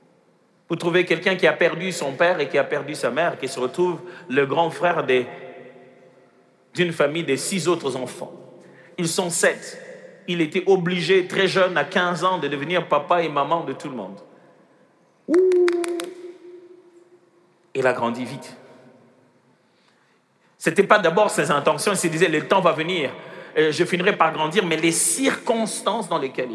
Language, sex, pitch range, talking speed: French, male, 150-190 Hz, 165 wpm